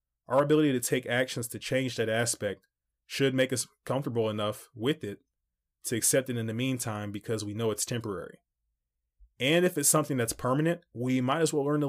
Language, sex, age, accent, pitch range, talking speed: English, male, 20-39, American, 80-130 Hz, 195 wpm